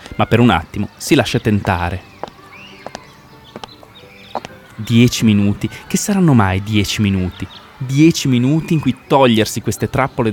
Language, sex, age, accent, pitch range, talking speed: Italian, male, 20-39, native, 100-125 Hz, 120 wpm